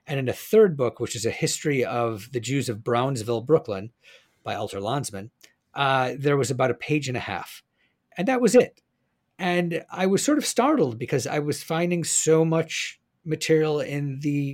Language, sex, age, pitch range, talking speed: English, male, 40-59, 120-160 Hz, 190 wpm